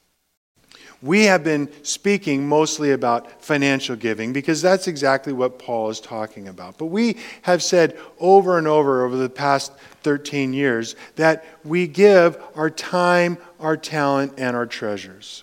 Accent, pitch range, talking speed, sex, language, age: American, 115-165 Hz, 150 wpm, male, English, 40-59